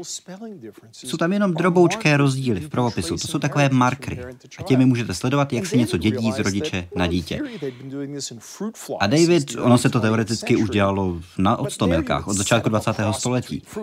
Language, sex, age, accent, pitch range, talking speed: Czech, male, 30-49, native, 105-145 Hz, 160 wpm